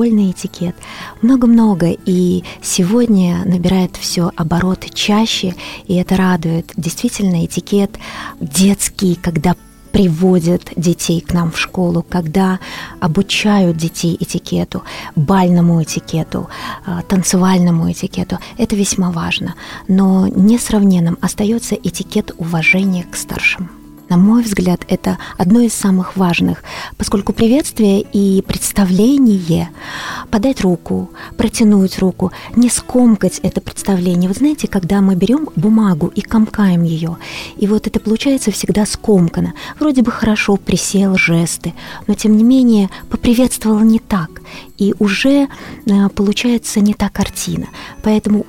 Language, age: Russian, 20-39